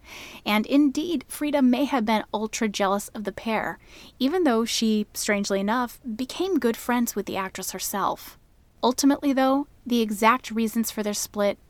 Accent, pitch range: American, 195-245 Hz